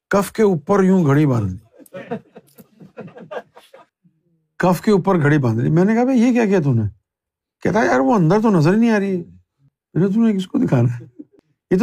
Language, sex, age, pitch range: Urdu, male, 50-69, 145-220 Hz